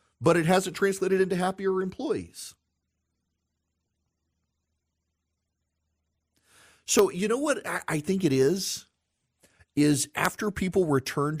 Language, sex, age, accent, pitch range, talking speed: English, male, 40-59, American, 100-150 Hz, 100 wpm